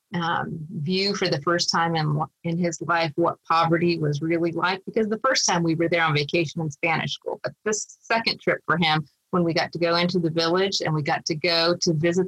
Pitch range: 160-185 Hz